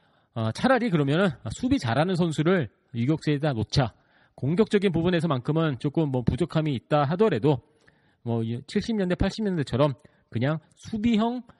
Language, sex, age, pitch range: Korean, male, 40-59, 130-175 Hz